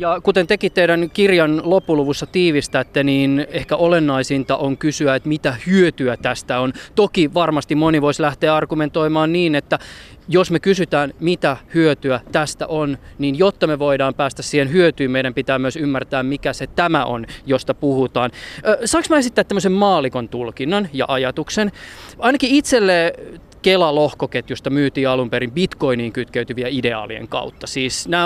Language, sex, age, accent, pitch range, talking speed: Finnish, male, 20-39, native, 135-180 Hz, 145 wpm